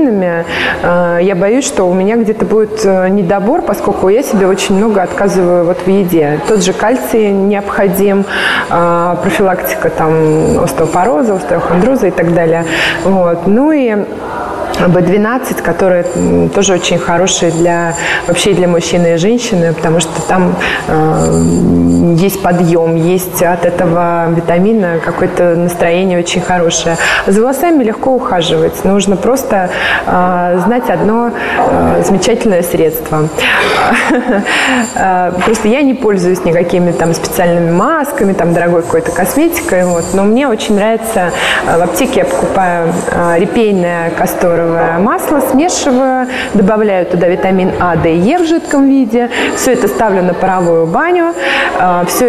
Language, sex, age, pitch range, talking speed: Russian, female, 20-39, 175-220 Hz, 120 wpm